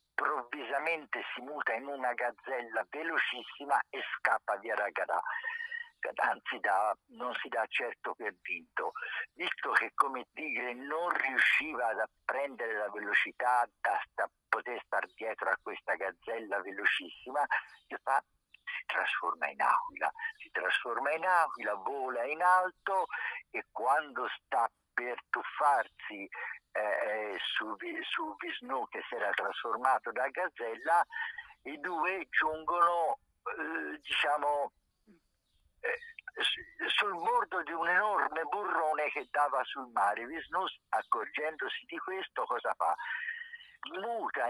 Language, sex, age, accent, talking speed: Italian, male, 50-69, native, 120 wpm